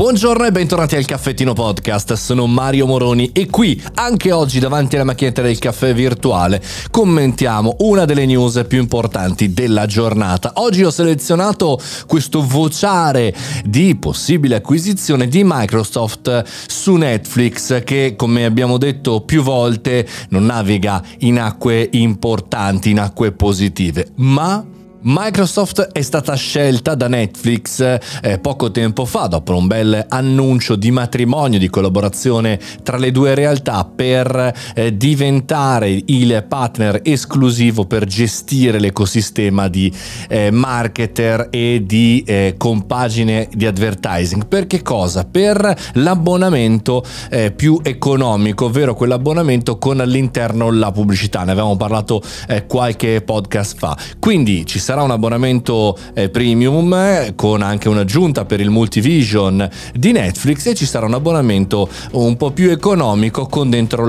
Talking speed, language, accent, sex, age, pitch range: 130 wpm, Italian, native, male, 30-49, 105-140 Hz